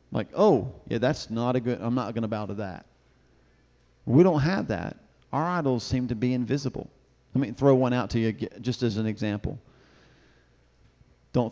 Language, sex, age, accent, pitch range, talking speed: English, male, 40-59, American, 110-145 Hz, 190 wpm